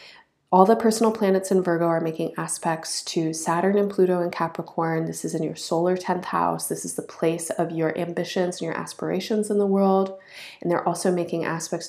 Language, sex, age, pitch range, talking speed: English, female, 20-39, 165-190 Hz, 200 wpm